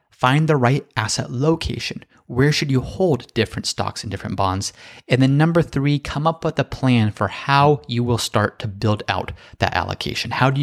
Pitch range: 105-130 Hz